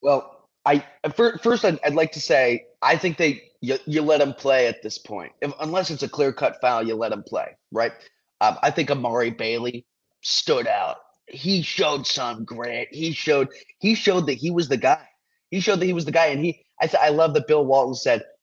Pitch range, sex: 115-160 Hz, male